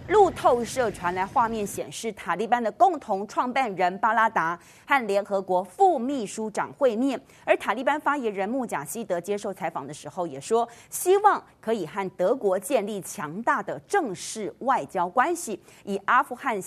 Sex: female